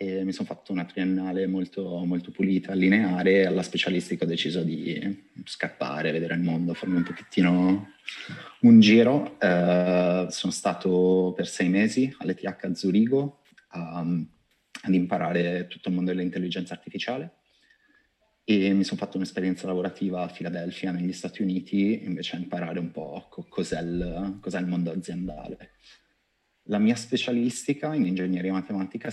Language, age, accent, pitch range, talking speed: Italian, 30-49, native, 90-100 Hz, 140 wpm